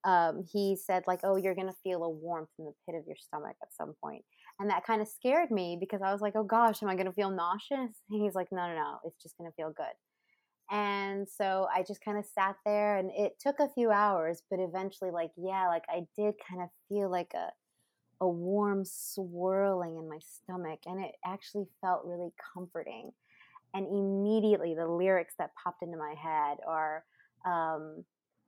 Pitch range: 175-205 Hz